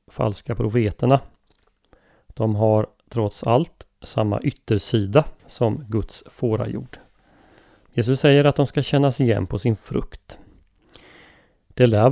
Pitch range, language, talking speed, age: 105-130 Hz, Swedish, 120 wpm, 30-49